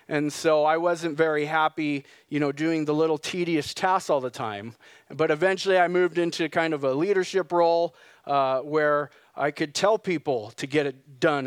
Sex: male